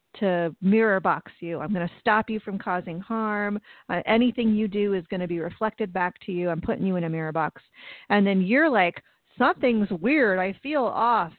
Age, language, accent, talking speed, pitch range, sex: 40-59, English, American, 210 wpm, 175-215 Hz, female